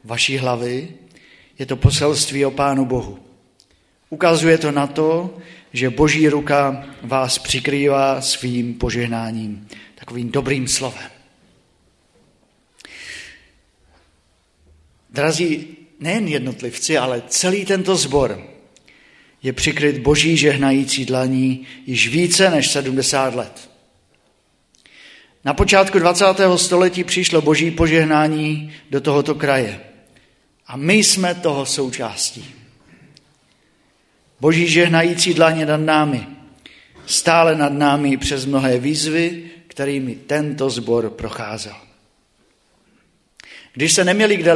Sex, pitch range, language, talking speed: male, 130-155 Hz, Czech, 100 wpm